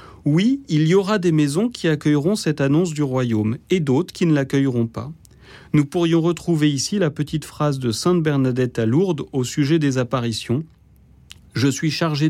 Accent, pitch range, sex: French, 125-170 Hz, male